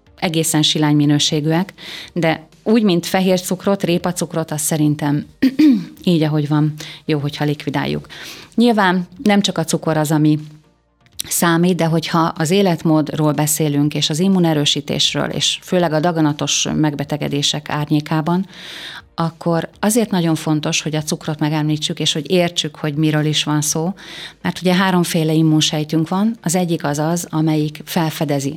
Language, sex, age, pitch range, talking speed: Hungarian, female, 30-49, 150-175 Hz, 140 wpm